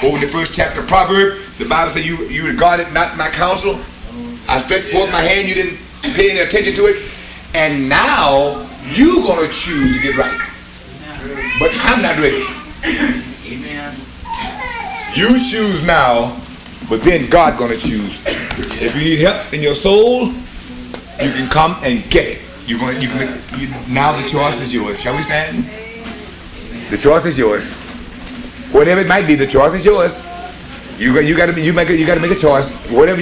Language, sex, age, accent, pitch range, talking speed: English, male, 40-59, American, 135-200 Hz, 180 wpm